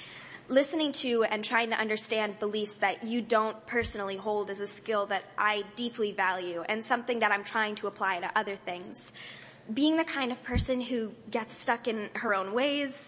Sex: female